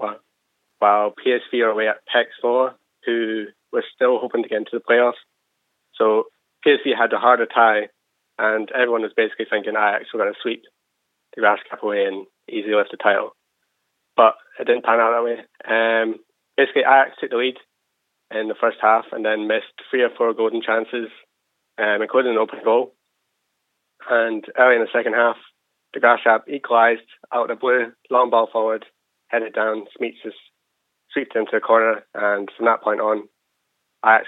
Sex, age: male, 20-39